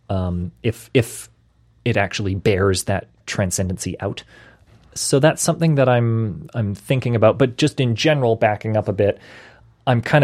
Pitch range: 100-120 Hz